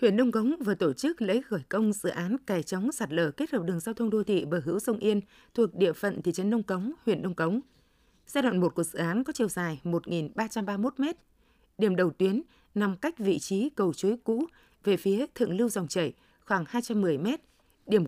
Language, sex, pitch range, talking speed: Vietnamese, female, 185-235 Hz, 215 wpm